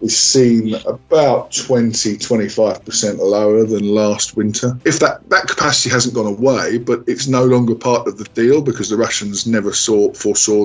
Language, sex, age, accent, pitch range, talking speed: English, male, 20-39, British, 100-120 Hz, 165 wpm